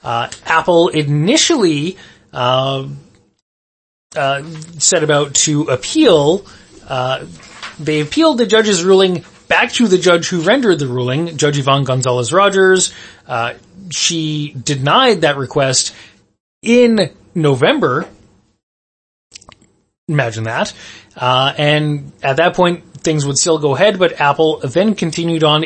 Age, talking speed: 30-49, 115 wpm